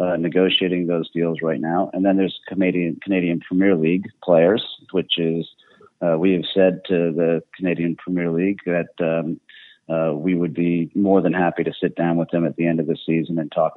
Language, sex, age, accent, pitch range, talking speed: English, male, 40-59, American, 80-95 Hz, 205 wpm